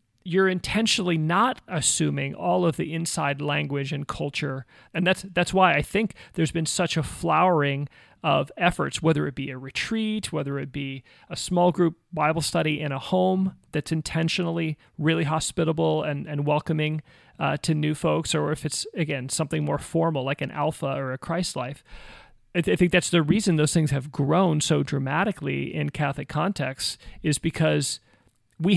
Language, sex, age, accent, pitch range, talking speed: English, male, 40-59, American, 140-175 Hz, 175 wpm